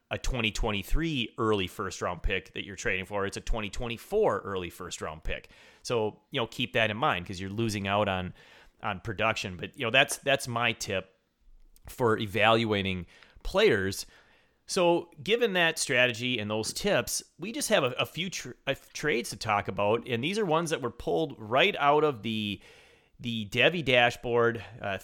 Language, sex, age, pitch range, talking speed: English, male, 30-49, 105-140 Hz, 180 wpm